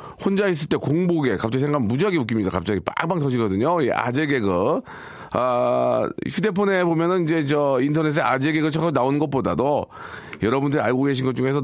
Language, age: Korean, 40-59